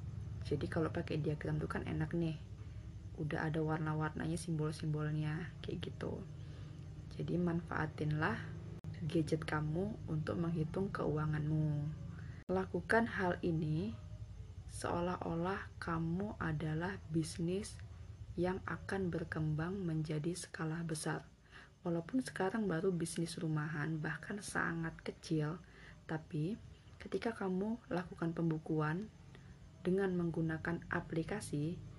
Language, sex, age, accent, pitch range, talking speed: Indonesian, female, 20-39, native, 150-180 Hz, 95 wpm